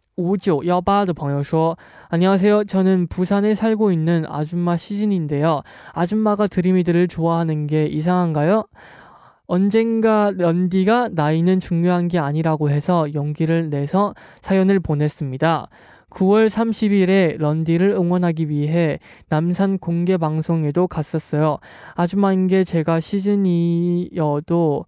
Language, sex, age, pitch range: Korean, male, 20-39, 150-190 Hz